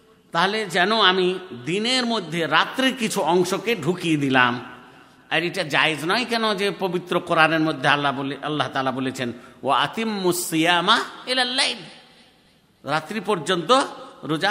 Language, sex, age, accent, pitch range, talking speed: Bengali, male, 50-69, native, 160-225 Hz, 70 wpm